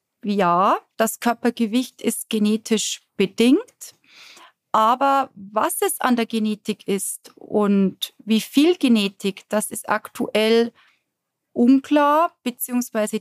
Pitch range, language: 215-270 Hz, German